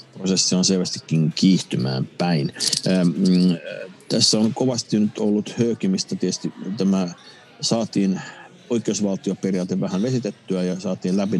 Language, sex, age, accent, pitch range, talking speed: Finnish, male, 60-79, native, 85-110 Hz, 95 wpm